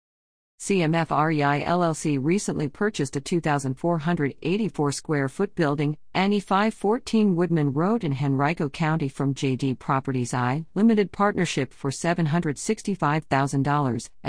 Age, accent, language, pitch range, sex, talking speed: 50-69, American, English, 145-195 Hz, female, 100 wpm